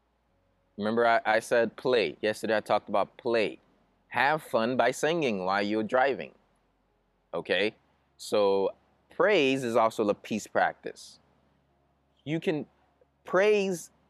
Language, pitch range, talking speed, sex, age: English, 95-155 Hz, 120 wpm, male, 20-39